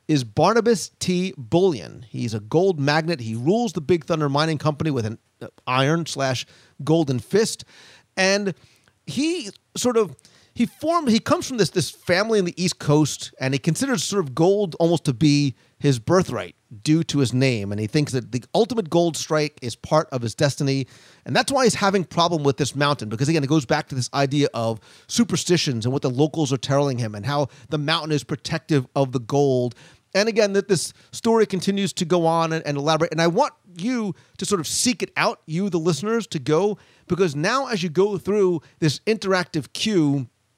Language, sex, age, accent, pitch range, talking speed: English, male, 40-59, American, 135-180 Hz, 200 wpm